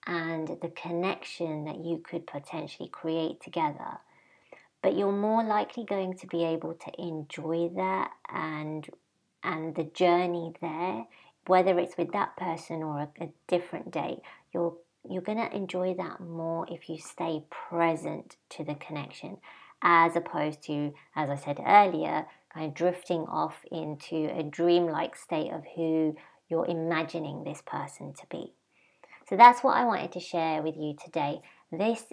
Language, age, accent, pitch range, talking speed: English, 30-49, British, 160-185 Hz, 155 wpm